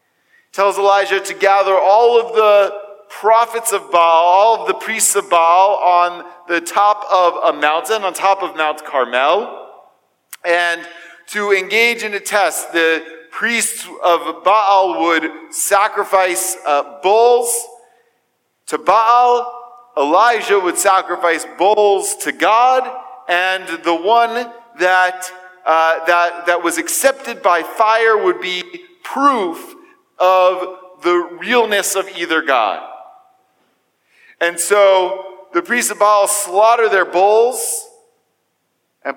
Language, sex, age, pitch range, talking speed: English, male, 40-59, 185-245 Hz, 120 wpm